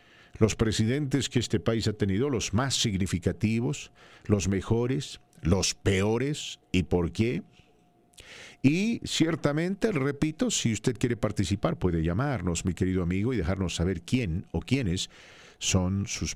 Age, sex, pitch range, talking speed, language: 50-69, male, 95-125 Hz, 135 wpm, English